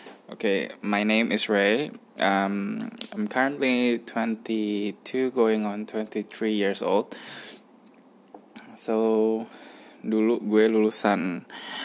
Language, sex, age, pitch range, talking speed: English, male, 10-29, 100-130 Hz, 100 wpm